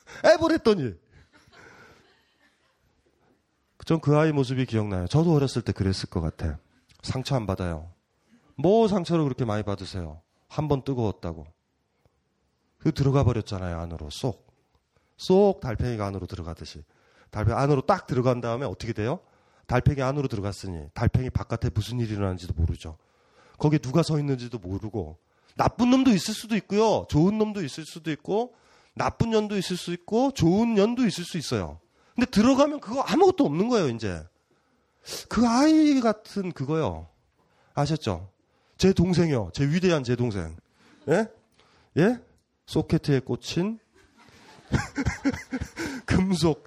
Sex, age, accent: male, 30-49, native